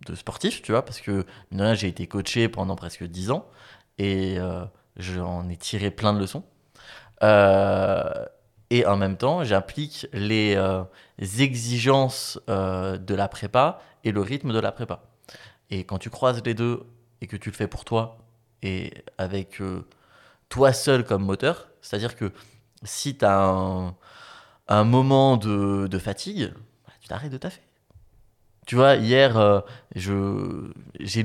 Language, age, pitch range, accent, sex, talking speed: French, 20-39, 95-120 Hz, French, male, 160 wpm